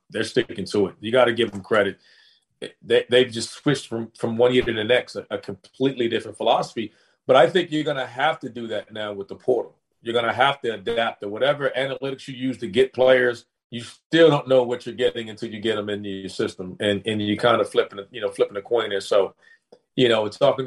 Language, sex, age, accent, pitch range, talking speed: English, male, 40-59, American, 110-130 Hz, 245 wpm